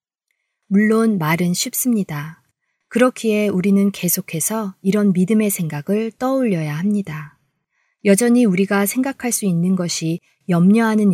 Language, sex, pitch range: Korean, female, 165-225 Hz